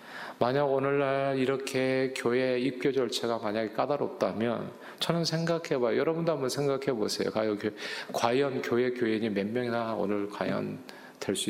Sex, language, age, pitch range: male, Korean, 40-59, 115-165 Hz